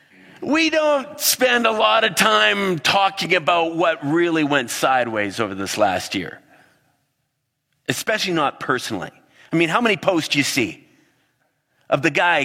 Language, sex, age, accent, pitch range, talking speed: English, male, 30-49, American, 120-175 Hz, 150 wpm